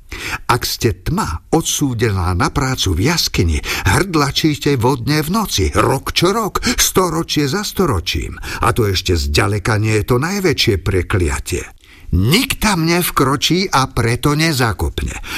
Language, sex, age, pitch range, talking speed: Slovak, male, 60-79, 100-145 Hz, 130 wpm